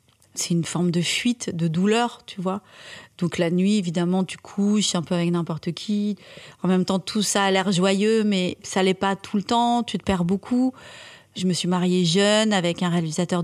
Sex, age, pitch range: female, 30-49, 185-220 Hz